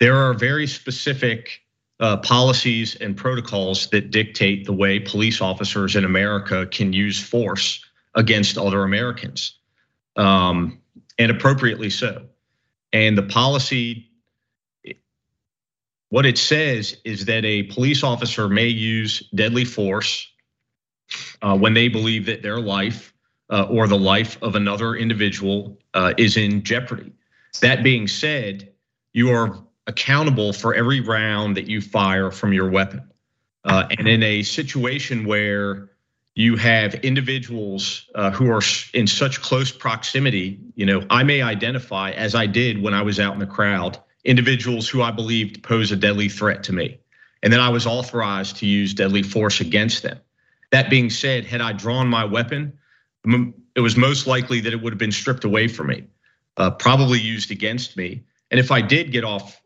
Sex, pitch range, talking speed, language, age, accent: male, 100-125 Hz, 160 wpm, English, 40-59, American